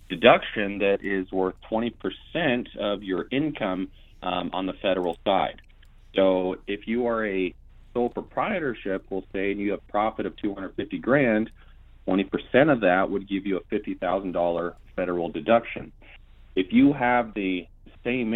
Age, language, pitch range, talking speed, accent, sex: 30-49, English, 90-110 Hz, 145 wpm, American, male